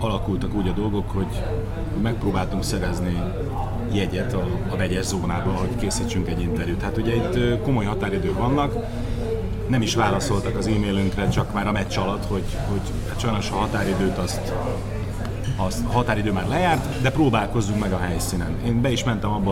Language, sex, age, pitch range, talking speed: Hungarian, male, 30-49, 95-120 Hz, 165 wpm